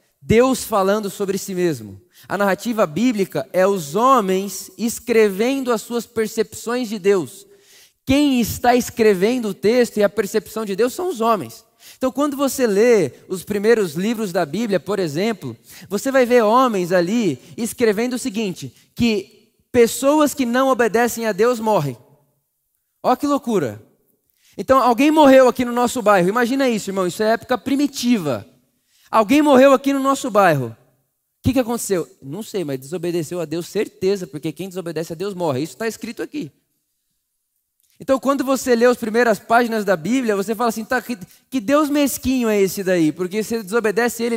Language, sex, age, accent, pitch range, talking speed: Portuguese, male, 20-39, Brazilian, 195-255 Hz, 170 wpm